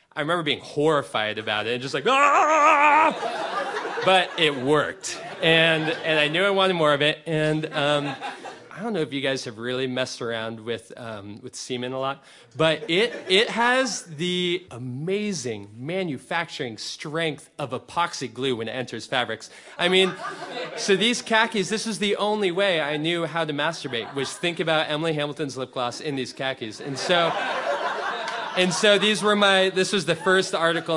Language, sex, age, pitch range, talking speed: English, male, 30-49, 135-170 Hz, 180 wpm